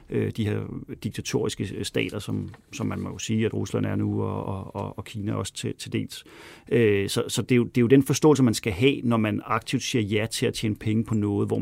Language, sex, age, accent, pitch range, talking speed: Danish, male, 40-59, native, 110-130 Hz, 250 wpm